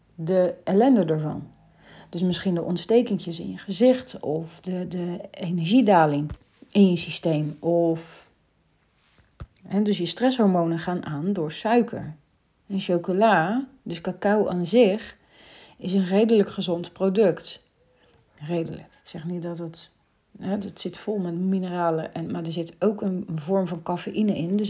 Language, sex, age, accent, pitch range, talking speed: Dutch, female, 40-59, Dutch, 170-205 Hz, 145 wpm